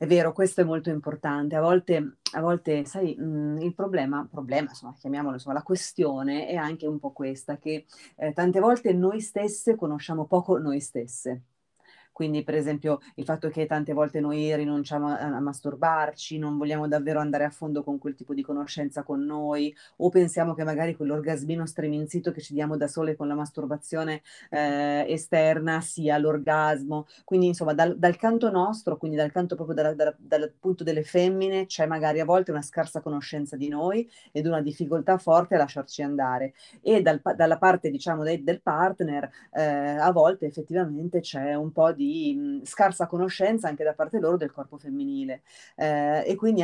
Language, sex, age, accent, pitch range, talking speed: Italian, female, 30-49, native, 150-175 Hz, 180 wpm